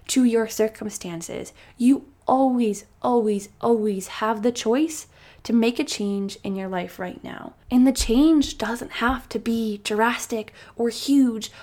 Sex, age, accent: female, 10-29, American